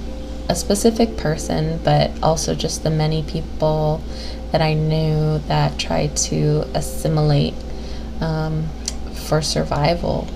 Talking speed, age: 110 wpm, 20-39